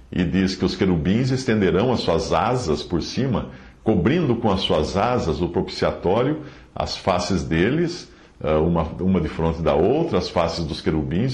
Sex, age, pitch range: male, 50-69, 80-125 Hz